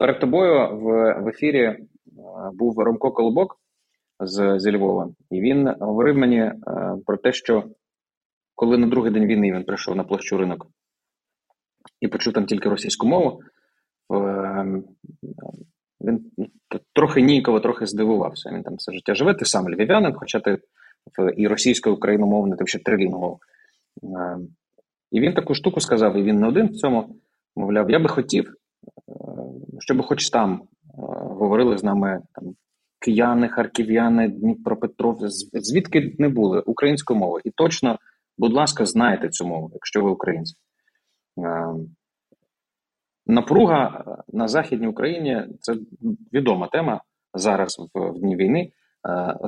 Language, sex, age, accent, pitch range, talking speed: Ukrainian, male, 20-39, native, 95-130 Hz, 140 wpm